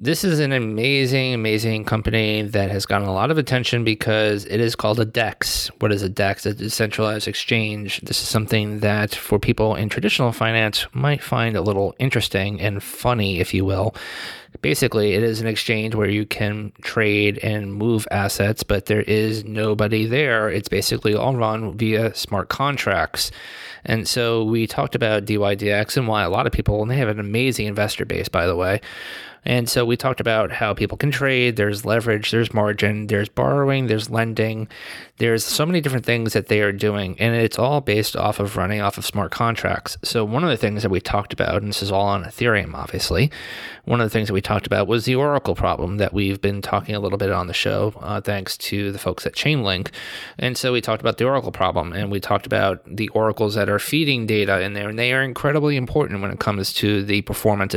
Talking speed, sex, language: 210 wpm, male, English